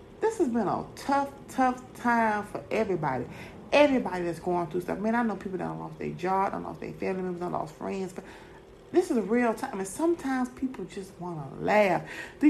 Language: English